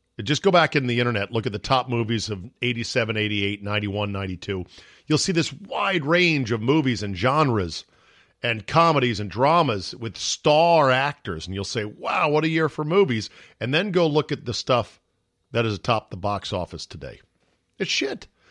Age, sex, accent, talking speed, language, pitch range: 50-69, male, American, 185 wpm, English, 100-140 Hz